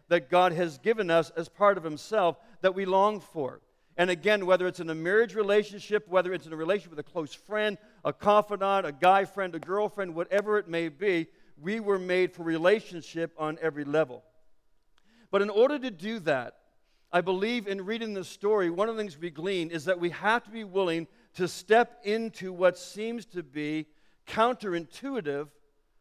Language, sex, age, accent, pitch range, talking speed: English, male, 50-69, American, 165-205 Hz, 190 wpm